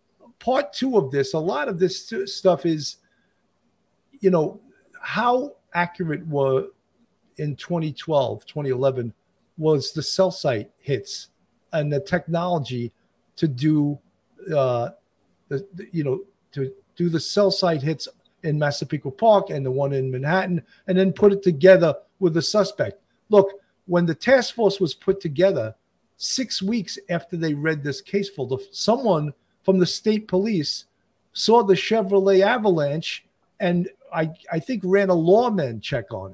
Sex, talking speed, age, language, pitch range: male, 145 wpm, 50-69, English, 145-195 Hz